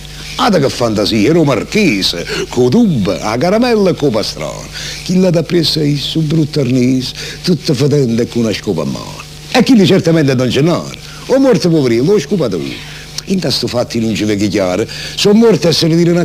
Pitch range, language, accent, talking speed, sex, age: 140-190 Hz, Italian, native, 190 wpm, male, 60-79